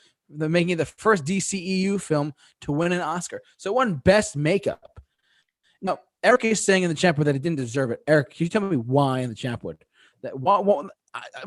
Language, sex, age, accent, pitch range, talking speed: English, male, 20-39, American, 145-195 Hz, 210 wpm